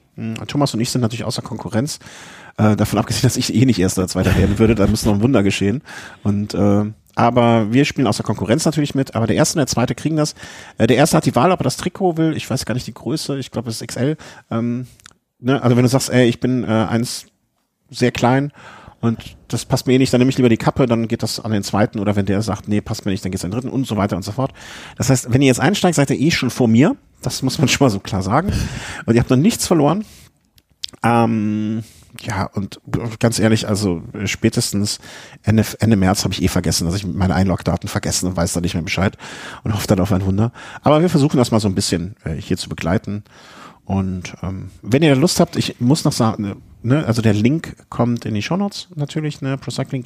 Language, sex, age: German, male, 40-59